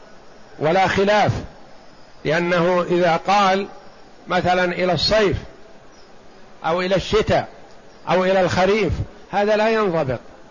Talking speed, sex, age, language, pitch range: 95 wpm, male, 50-69, Arabic, 175-200 Hz